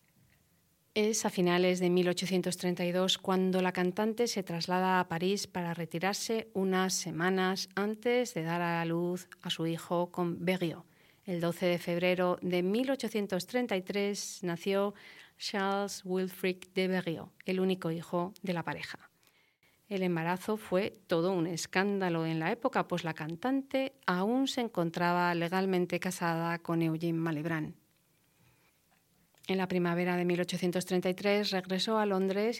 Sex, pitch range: female, 170-195 Hz